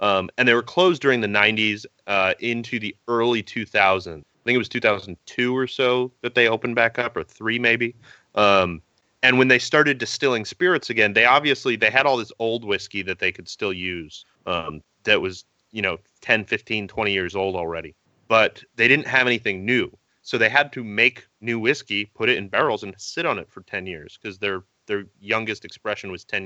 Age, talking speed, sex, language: 30-49, 205 wpm, male, English